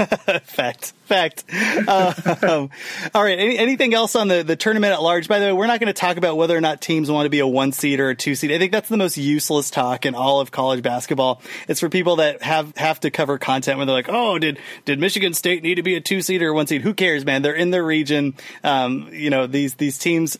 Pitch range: 140-185 Hz